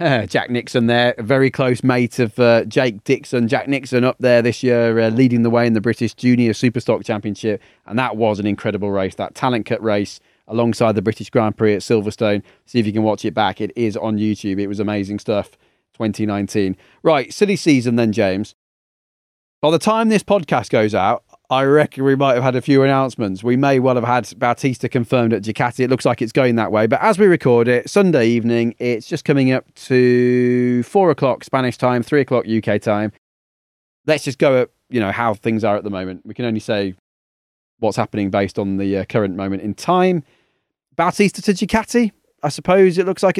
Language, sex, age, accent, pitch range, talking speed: English, male, 30-49, British, 110-150 Hz, 210 wpm